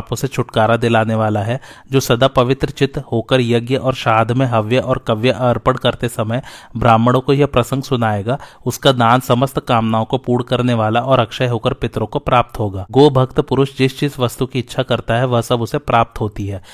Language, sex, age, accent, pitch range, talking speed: Hindi, male, 30-49, native, 115-135 Hz, 45 wpm